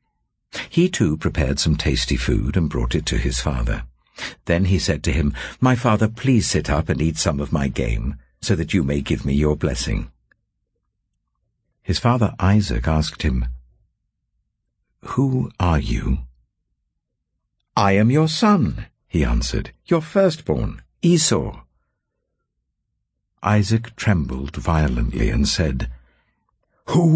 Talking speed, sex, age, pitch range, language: 130 wpm, male, 60-79, 80-120 Hz, English